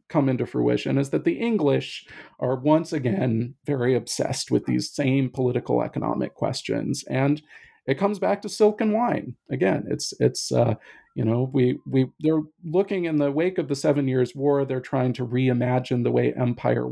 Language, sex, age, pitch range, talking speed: English, male, 40-59, 120-155 Hz, 180 wpm